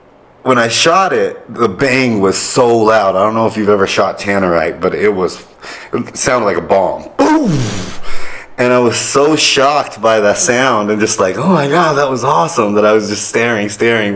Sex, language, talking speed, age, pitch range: male, English, 210 wpm, 30-49, 100-125 Hz